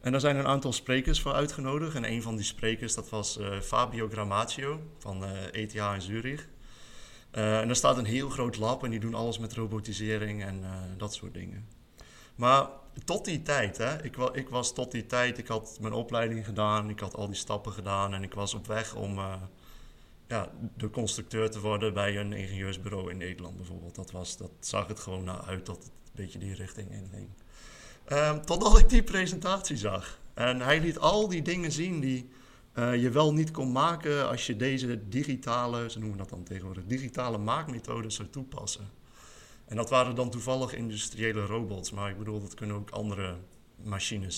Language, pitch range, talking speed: Dutch, 100-130 Hz, 195 wpm